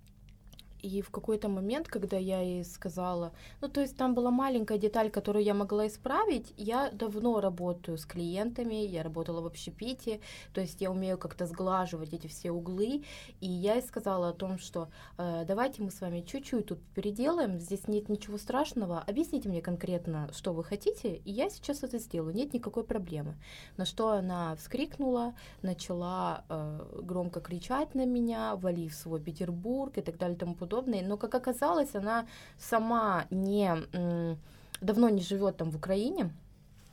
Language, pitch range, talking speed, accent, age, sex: Russian, 175-230 Hz, 160 wpm, native, 20-39, female